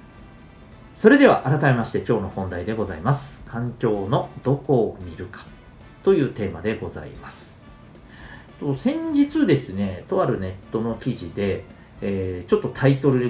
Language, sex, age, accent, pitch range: Japanese, male, 40-59, native, 95-130 Hz